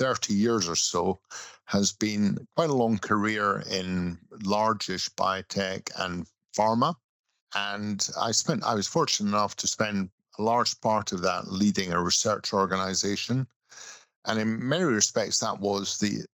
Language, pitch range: English, 95-110 Hz